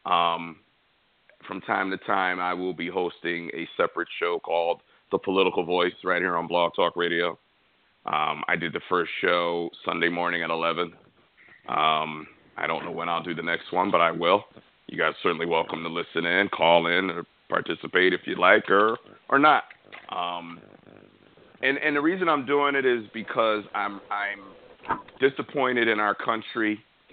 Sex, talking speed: male, 175 wpm